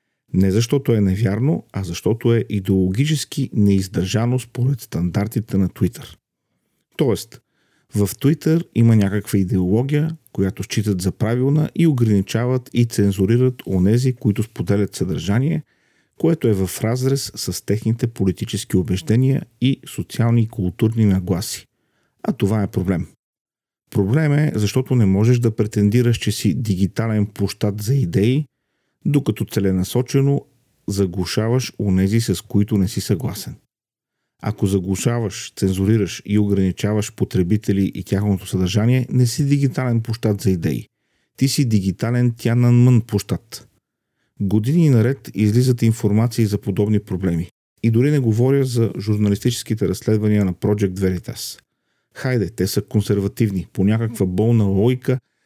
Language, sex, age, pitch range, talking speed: Bulgarian, male, 40-59, 100-125 Hz, 125 wpm